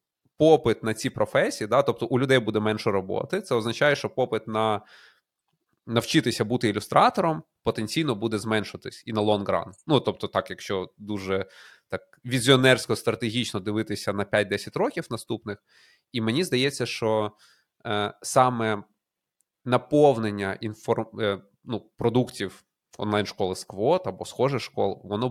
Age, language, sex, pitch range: 20-39, Ukrainian, male, 105-125 Hz